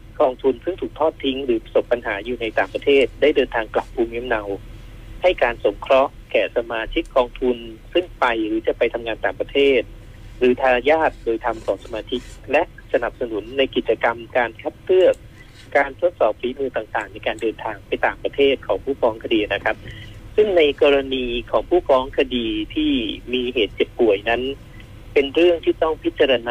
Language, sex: Thai, male